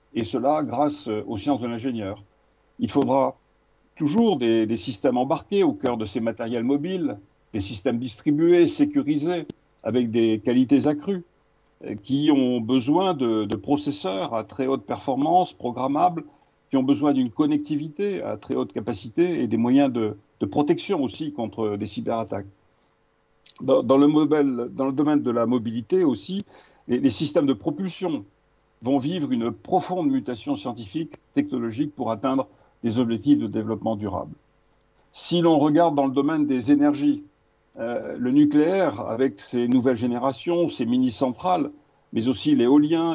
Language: French